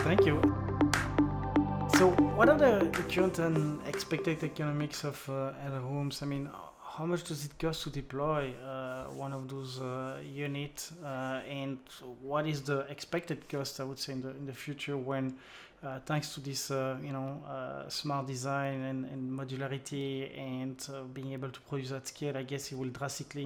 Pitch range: 135-145 Hz